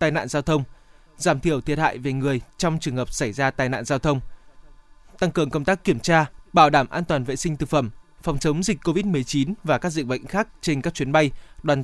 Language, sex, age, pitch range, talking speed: Vietnamese, male, 20-39, 140-170 Hz, 245 wpm